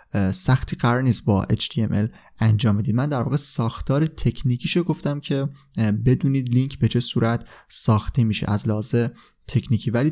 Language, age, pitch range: Persian, 20-39, 110-140 Hz